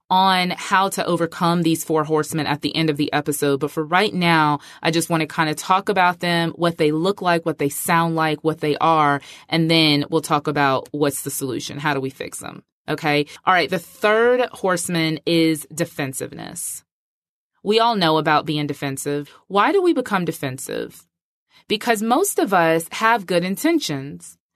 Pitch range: 150-200 Hz